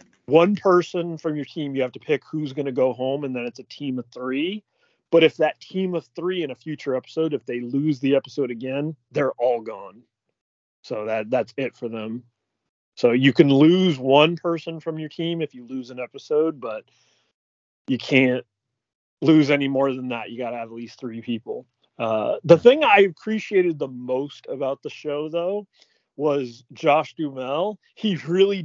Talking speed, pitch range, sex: 190 wpm, 125-165 Hz, male